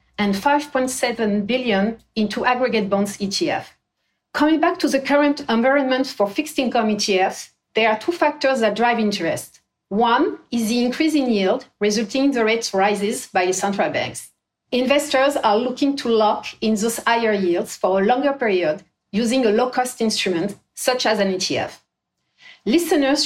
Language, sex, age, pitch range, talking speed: English, female, 40-59, 210-280 Hz, 155 wpm